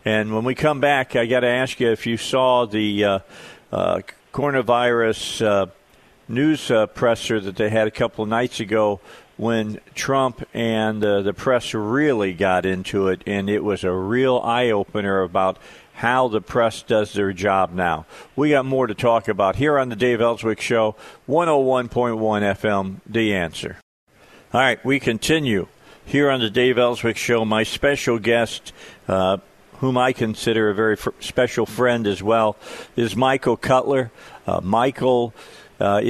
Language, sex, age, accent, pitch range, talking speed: English, male, 50-69, American, 105-125 Hz, 165 wpm